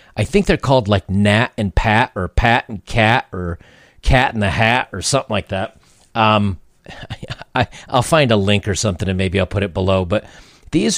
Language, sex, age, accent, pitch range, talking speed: English, male, 40-59, American, 100-130 Hz, 195 wpm